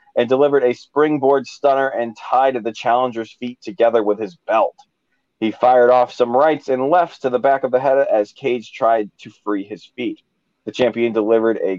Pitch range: 115-155 Hz